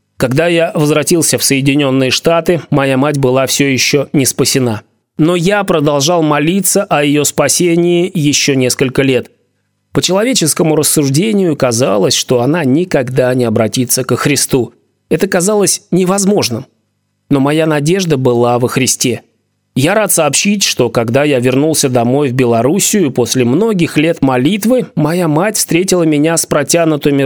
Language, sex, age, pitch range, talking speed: Russian, male, 30-49, 130-170 Hz, 140 wpm